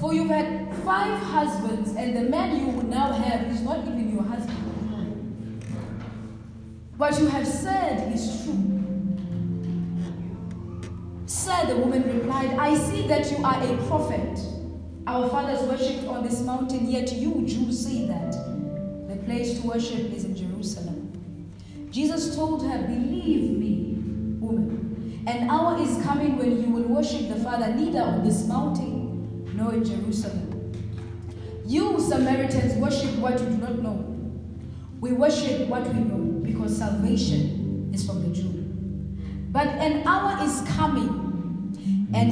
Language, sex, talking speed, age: English, female, 140 wpm, 20-39